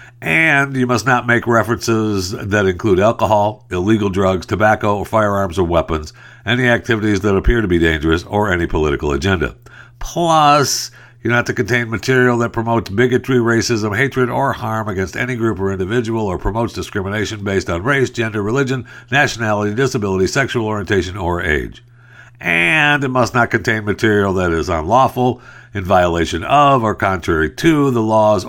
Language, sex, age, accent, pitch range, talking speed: English, male, 60-79, American, 95-125 Hz, 160 wpm